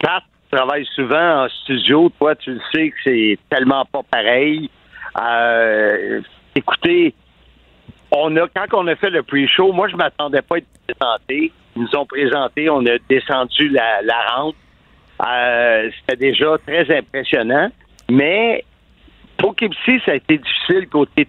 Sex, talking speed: male, 155 wpm